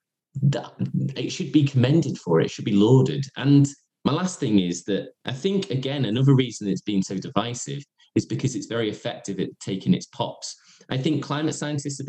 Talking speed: 195 wpm